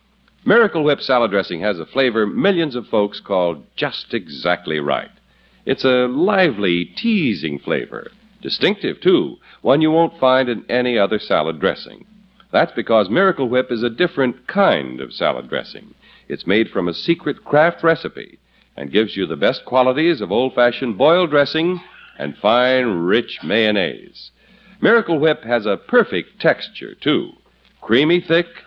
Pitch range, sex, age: 115-190 Hz, male, 60-79